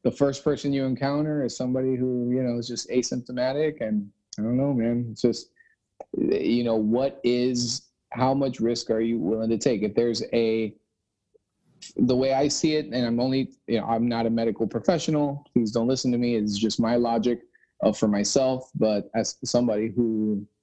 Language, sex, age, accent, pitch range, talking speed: English, male, 30-49, American, 110-130 Hz, 190 wpm